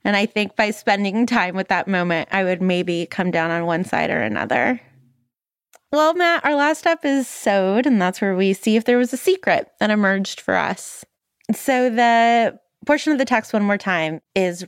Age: 20-39